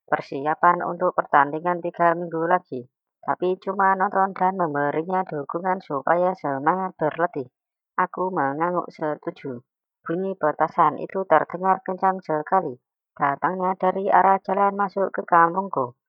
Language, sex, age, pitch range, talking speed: Indonesian, male, 20-39, 160-185 Hz, 115 wpm